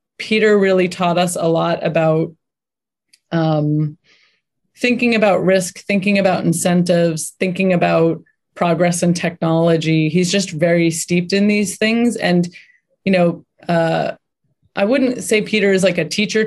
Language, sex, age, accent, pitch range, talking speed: English, female, 20-39, American, 160-185 Hz, 140 wpm